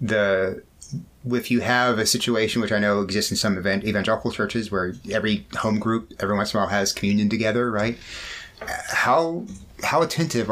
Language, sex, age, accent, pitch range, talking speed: English, male, 30-49, American, 95-115 Hz, 175 wpm